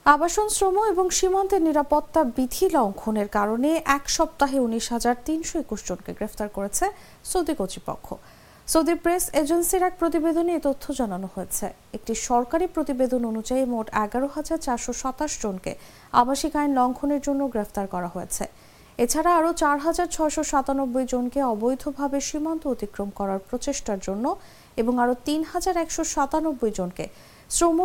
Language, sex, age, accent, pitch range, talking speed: English, female, 50-69, Indian, 220-320 Hz, 105 wpm